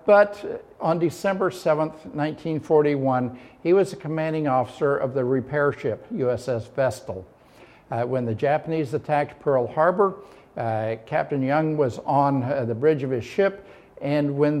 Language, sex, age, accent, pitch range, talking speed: English, male, 60-79, American, 130-155 Hz, 150 wpm